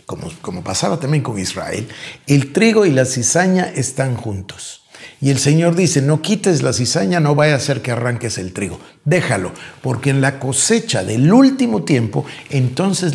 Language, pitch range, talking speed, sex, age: Spanish, 120-160 Hz, 175 wpm, male, 50-69